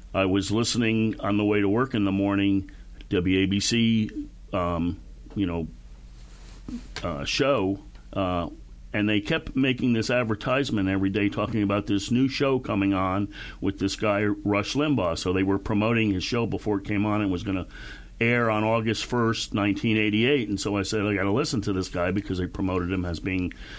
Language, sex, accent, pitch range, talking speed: English, male, American, 95-115 Hz, 185 wpm